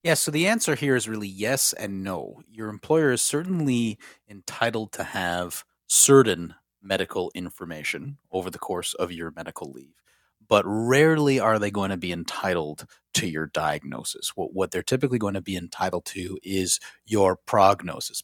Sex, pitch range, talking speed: male, 95-125 Hz, 165 wpm